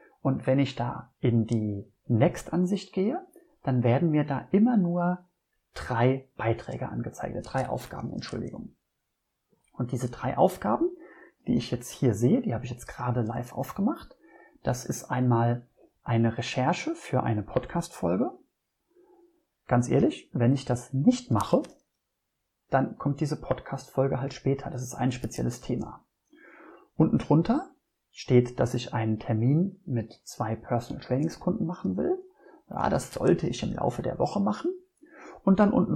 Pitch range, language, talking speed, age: 120-180 Hz, German, 145 wpm, 30-49